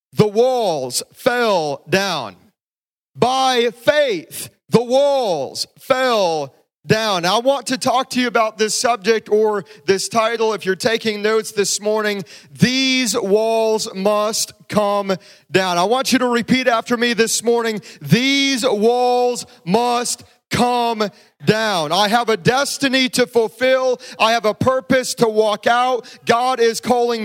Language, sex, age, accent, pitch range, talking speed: English, male, 30-49, American, 195-245 Hz, 140 wpm